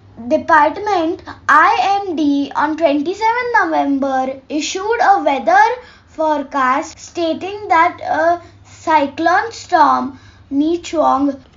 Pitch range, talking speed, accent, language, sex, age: 285-385 Hz, 80 wpm, Indian, English, female, 20-39